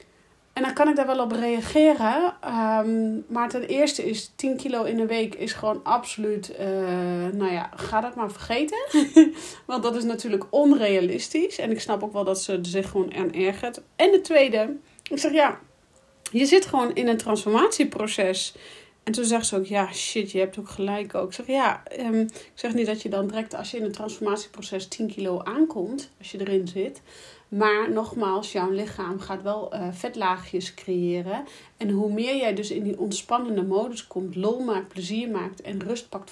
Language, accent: Dutch, Dutch